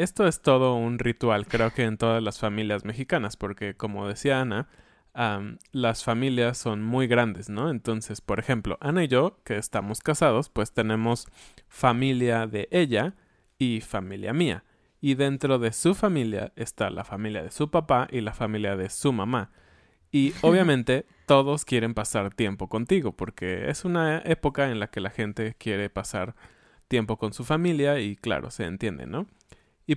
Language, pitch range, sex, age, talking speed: Spanish, 105-140 Hz, male, 20-39, 170 wpm